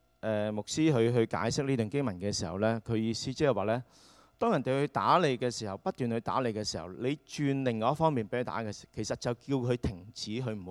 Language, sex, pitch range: Chinese, male, 100-125 Hz